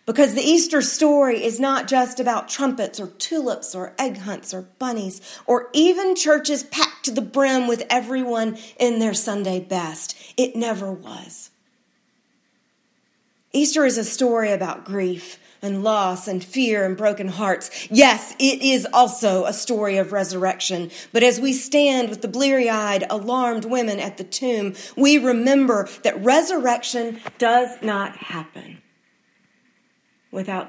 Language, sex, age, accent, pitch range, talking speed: English, female, 40-59, American, 195-260 Hz, 145 wpm